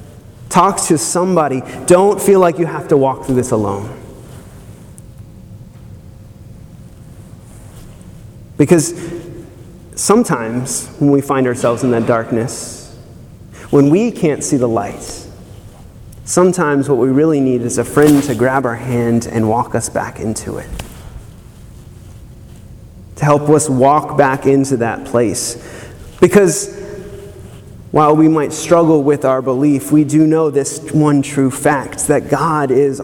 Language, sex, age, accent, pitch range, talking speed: English, male, 30-49, American, 115-155 Hz, 130 wpm